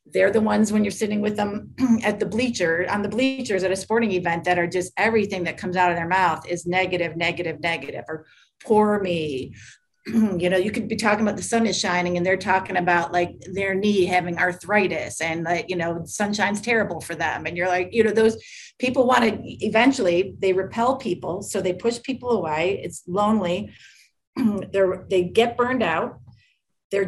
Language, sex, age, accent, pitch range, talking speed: English, female, 40-59, American, 180-220 Hz, 195 wpm